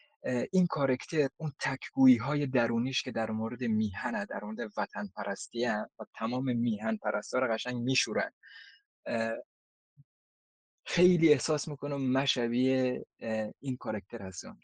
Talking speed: 115 wpm